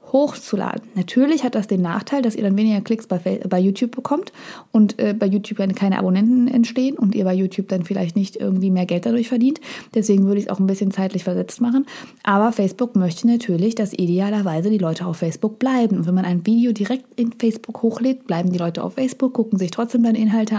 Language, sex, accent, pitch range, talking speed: German, female, German, 200-245 Hz, 220 wpm